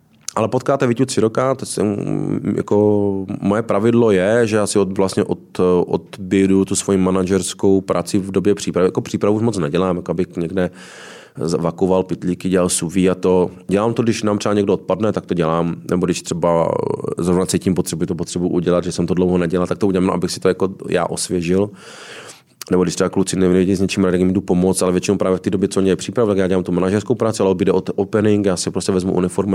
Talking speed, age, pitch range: 210 wpm, 20-39, 90-100 Hz